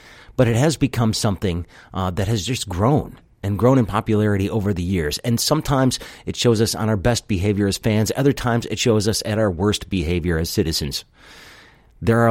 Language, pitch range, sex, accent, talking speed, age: English, 85-110 Hz, male, American, 200 wpm, 40-59